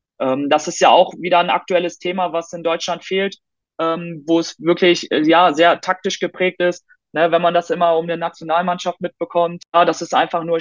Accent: German